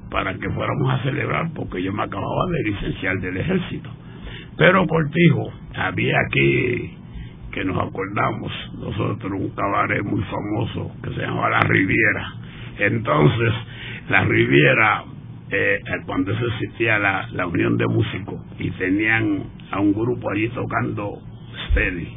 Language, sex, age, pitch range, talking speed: Spanish, male, 60-79, 100-155 Hz, 135 wpm